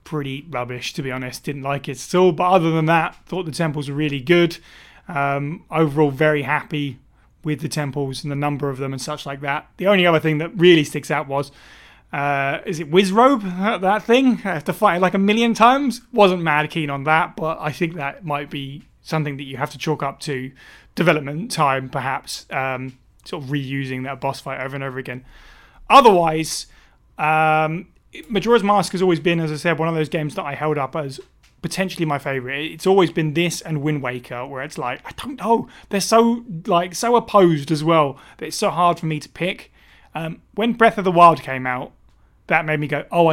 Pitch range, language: 140-180 Hz, English